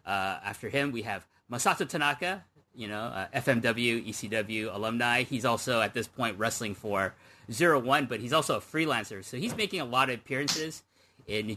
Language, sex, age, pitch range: English, male, 30-49, 105-140 Hz